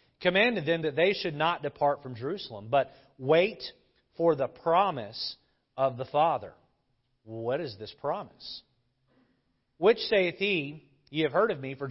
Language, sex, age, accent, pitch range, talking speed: English, male, 40-59, American, 130-165 Hz, 150 wpm